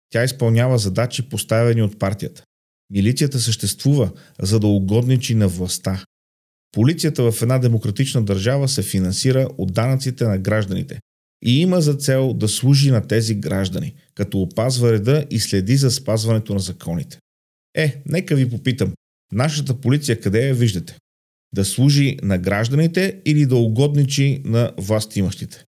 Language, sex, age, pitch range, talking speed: Bulgarian, male, 40-59, 105-130 Hz, 140 wpm